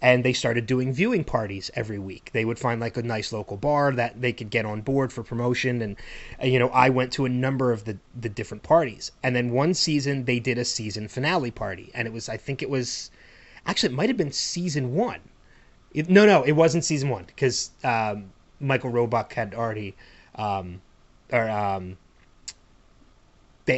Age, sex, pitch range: 30-49, male, 115-140 Hz